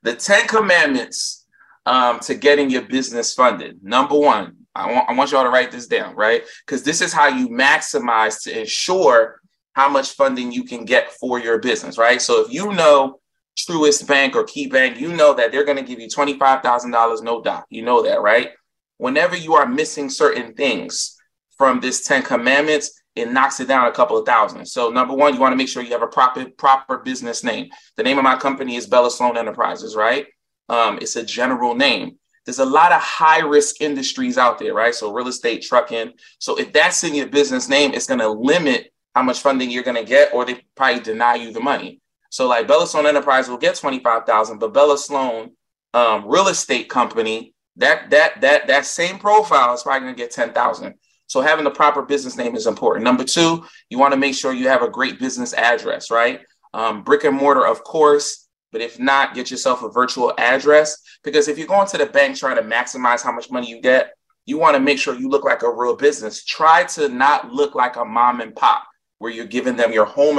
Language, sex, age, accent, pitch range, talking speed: English, male, 20-39, American, 125-150 Hz, 220 wpm